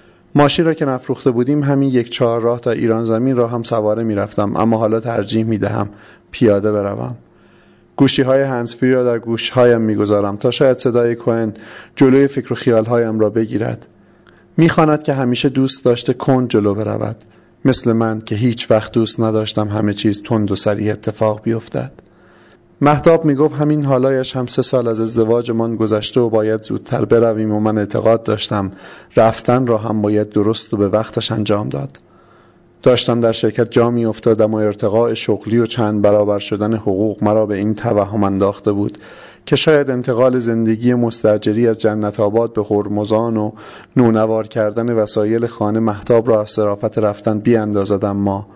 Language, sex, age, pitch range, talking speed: Persian, male, 30-49, 105-120 Hz, 165 wpm